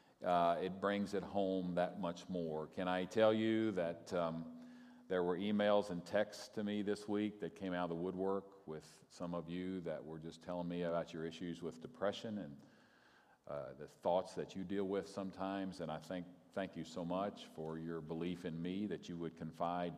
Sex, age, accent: male, 50-69, American